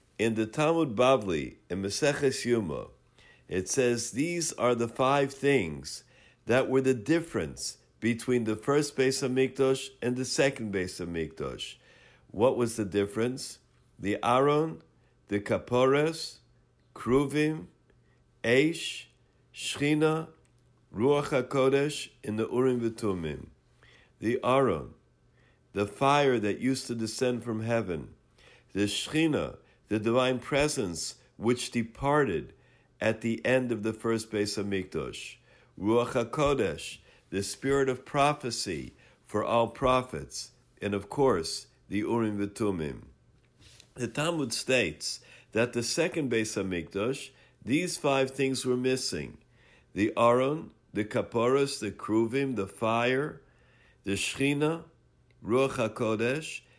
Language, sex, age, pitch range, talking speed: English, male, 60-79, 110-135 Hz, 120 wpm